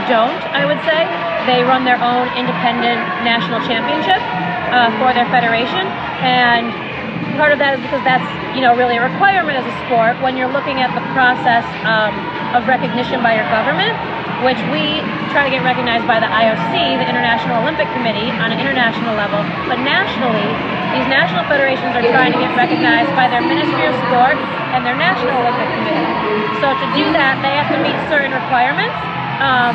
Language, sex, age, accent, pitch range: Korean, female, 30-49, American, 230-265 Hz